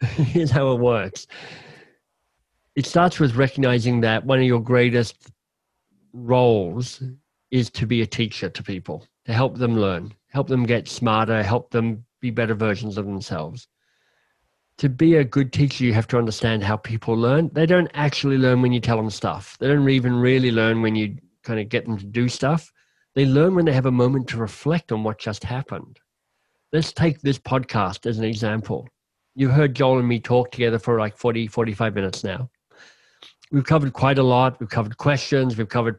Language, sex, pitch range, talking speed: English, male, 115-135 Hz, 190 wpm